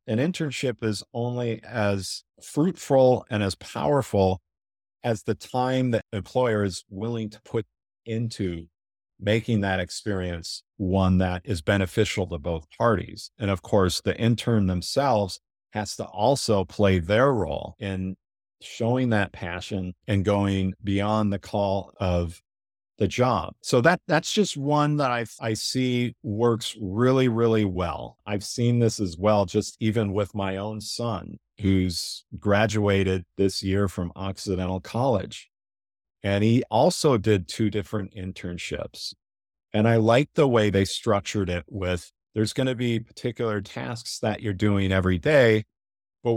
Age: 50-69